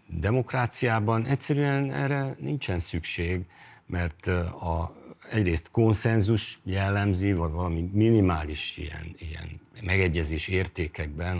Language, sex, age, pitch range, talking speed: Hungarian, male, 50-69, 85-105 Hz, 90 wpm